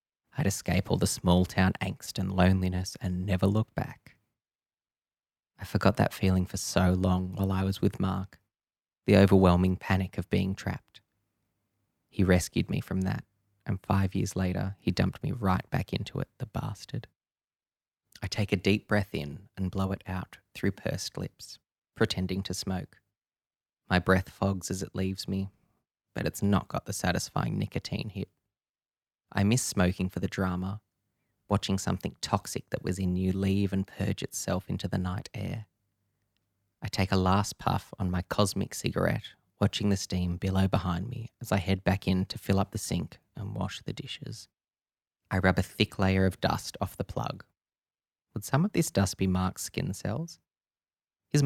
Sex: male